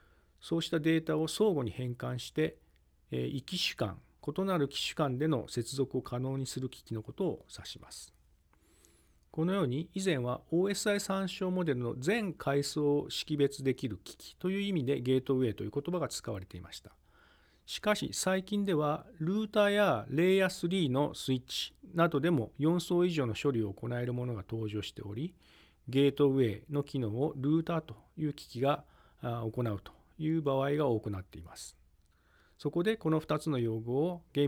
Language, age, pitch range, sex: Japanese, 40-59, 110-160 Hz, male